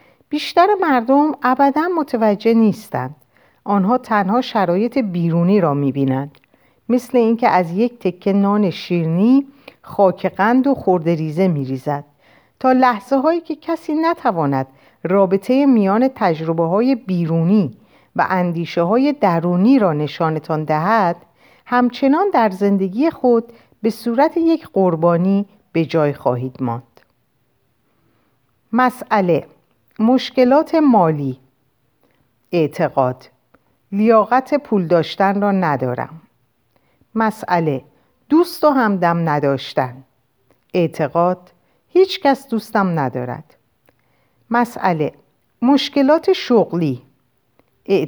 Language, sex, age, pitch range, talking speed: Persian, female, 50-69, 150-245 Hz, 90 wpm